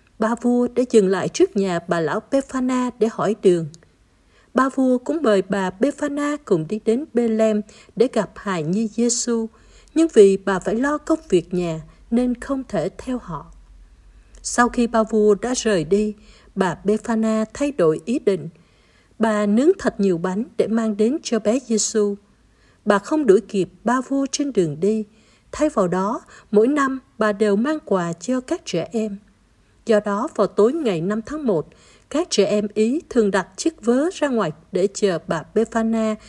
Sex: female